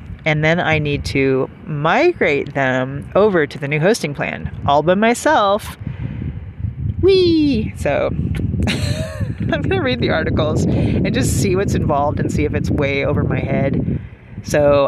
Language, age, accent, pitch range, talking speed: English, 30-49, American, 140-195 Hz, 150 wpm